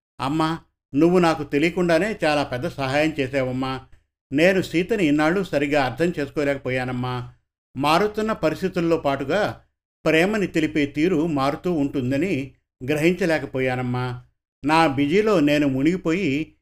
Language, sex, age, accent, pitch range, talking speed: Telugu, male, 50-69, native, 135-165 Hz, 100 wpm